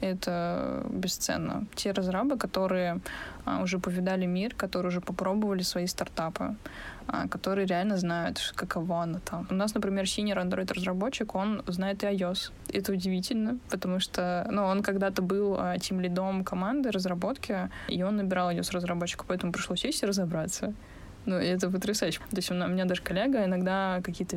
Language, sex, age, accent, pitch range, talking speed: Russian, female, 20-39, native, 180-200 Hz, 160 wpm